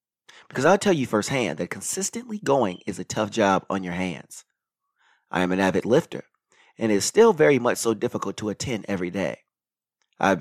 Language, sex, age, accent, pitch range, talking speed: English, male, 30-49, American, 100-130 Hz, 190 wpm